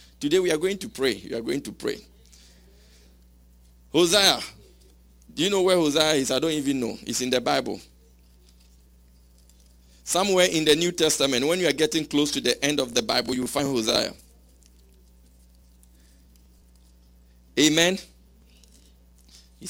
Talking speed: 145 wpm